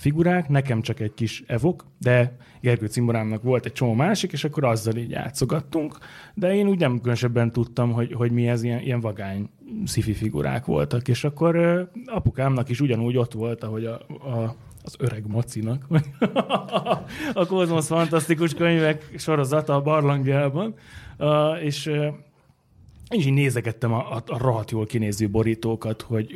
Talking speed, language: 155 wpm, Hungarian